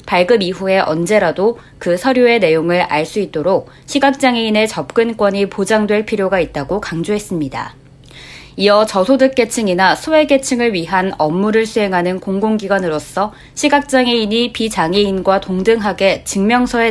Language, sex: Korean, female